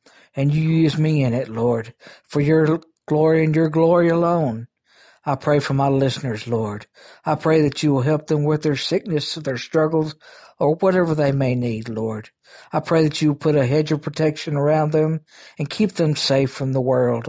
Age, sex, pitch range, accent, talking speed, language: 60-79, male, 125-155 Hz, American, 200 wpm, English